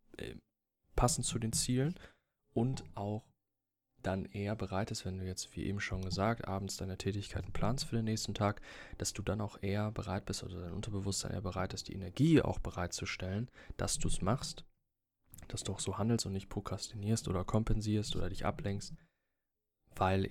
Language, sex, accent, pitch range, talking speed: German, male, German, 95-115 Hz, 175 wpm